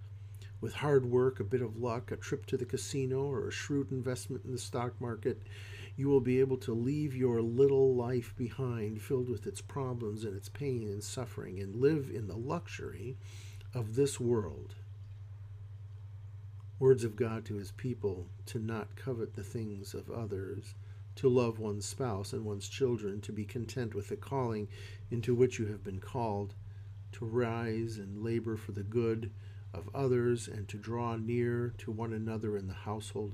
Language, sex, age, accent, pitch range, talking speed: English, male, 50-69, American, 100-120 Hz, 175 wpm